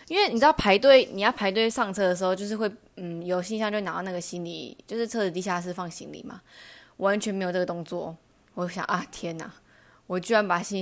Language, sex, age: Chinese, female, 20-39